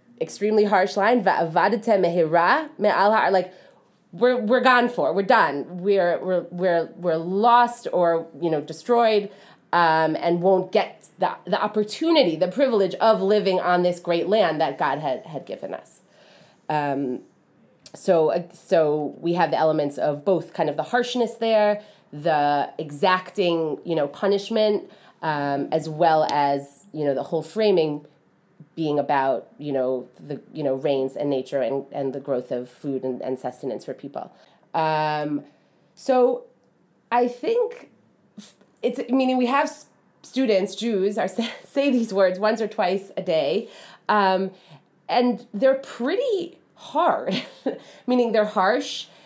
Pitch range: 160-230 Hz